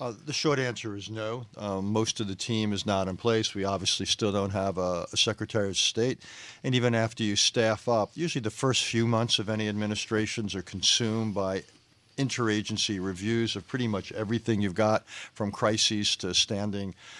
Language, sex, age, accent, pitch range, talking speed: English, male, 50-69, American, 105-120 Hz, 190 wpm